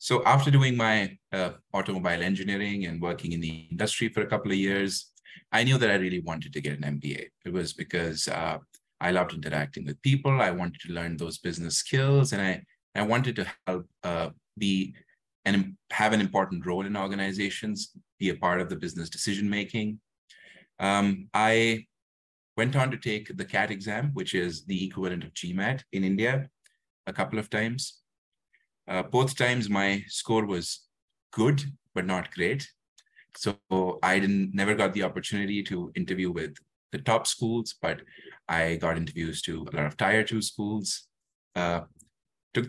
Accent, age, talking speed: Indian, 30-49, 175 wpm